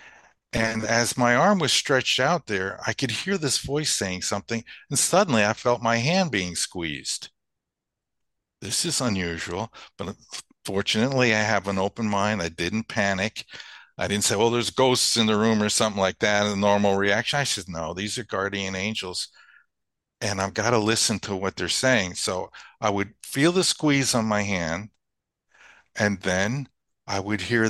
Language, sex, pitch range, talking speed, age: English, male, 100-120 Hz, 180 wpm, 50-69